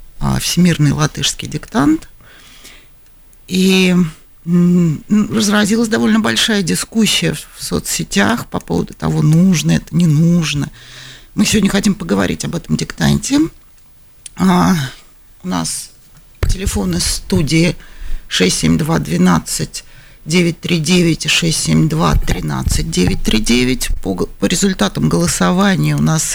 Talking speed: 85 wpm